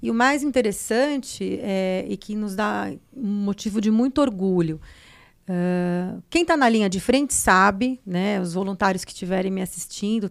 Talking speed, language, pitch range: 170 wpm, Portuguese, 190-235 Hz